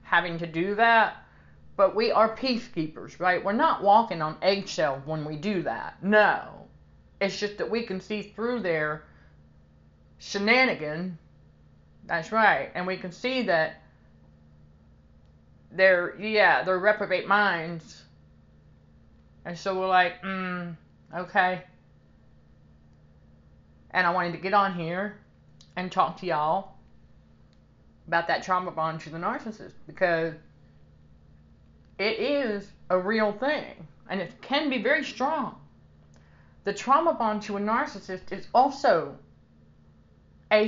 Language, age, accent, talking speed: English, 30-49, American, 125 wpm